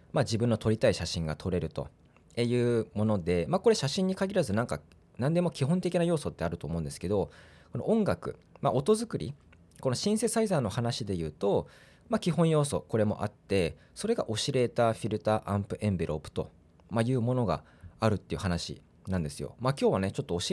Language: Japanese